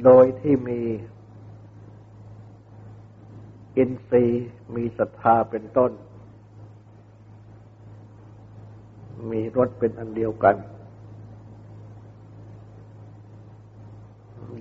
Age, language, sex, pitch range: 60-79, Thai, male, 105-110 Hz